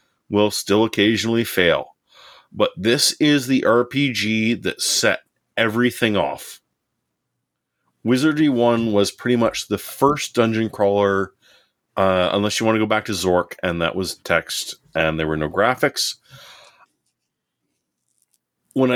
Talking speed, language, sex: 130 wpm, English, male